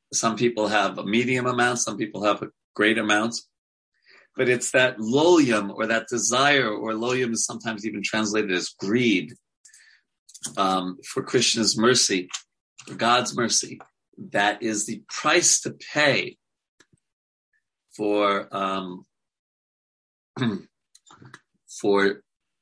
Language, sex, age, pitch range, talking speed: English, male, 40-59, 105-130 Hz, 115 wpm